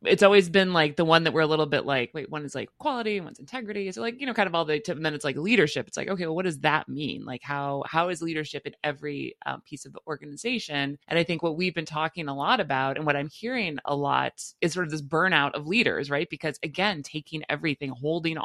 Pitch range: 145-195 Hz